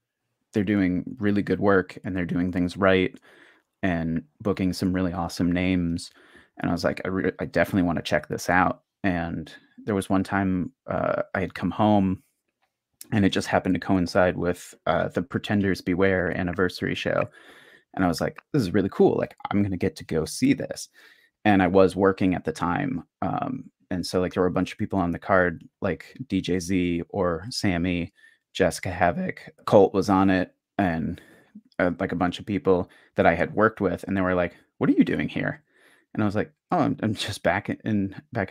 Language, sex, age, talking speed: English, male, 30-49, 205 wpm